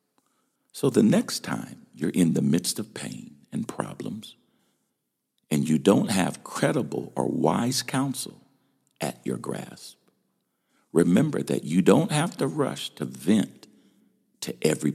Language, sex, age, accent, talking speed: English, male, 60-79, American, 135 wpm